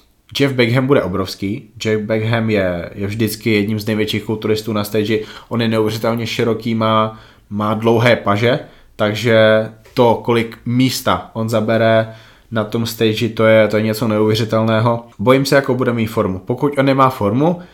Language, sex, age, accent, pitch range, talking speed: Czech, male, 20-39, native, 110-120 Hz, 160 wpm